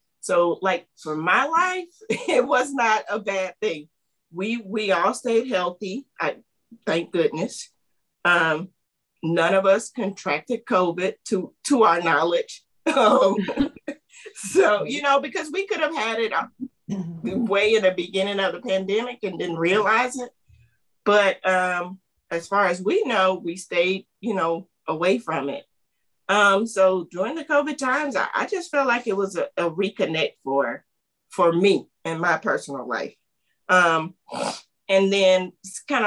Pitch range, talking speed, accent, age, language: 170-230 Hz, 150 wpm, American, 40-59, English